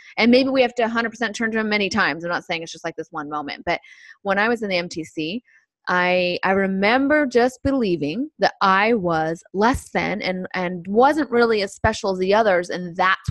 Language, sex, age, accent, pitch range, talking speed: English, female, 20-39, American, 170-225 Hz, 215 wpm